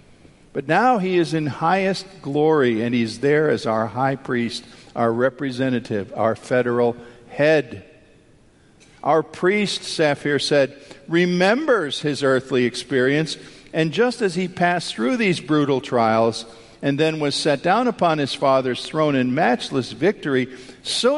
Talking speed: 140 wpm